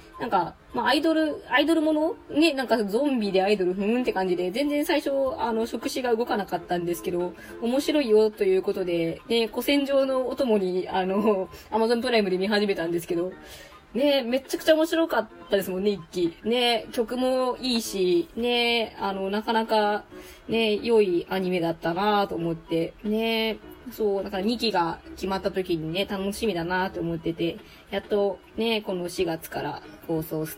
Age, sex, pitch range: 20-39, female, 185-255 Hz